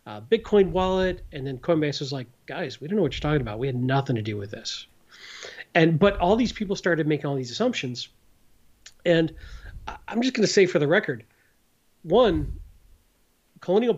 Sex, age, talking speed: male, 40-59, 190 wpm